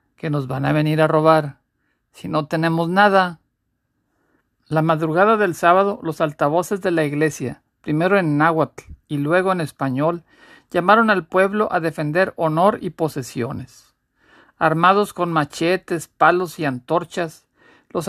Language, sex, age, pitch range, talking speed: Spanish, male, 50-69, 150-185 Hz, 140 wpm